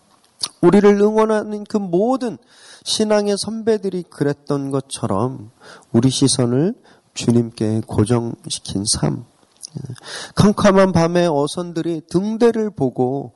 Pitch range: 130-185 Hz